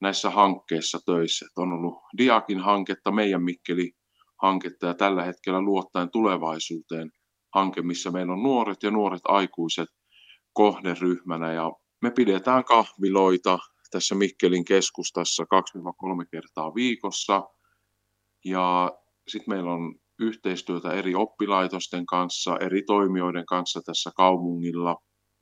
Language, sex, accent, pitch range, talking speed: Finnish, male, native, 85-100 Hz, 110 wpm